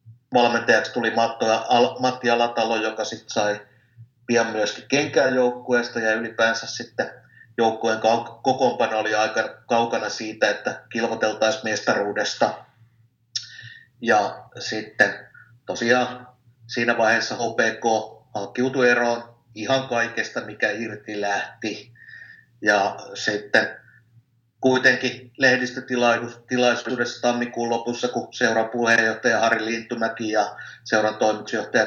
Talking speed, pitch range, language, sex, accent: 90 wpm, 110-120 Hz, Finnish, male, native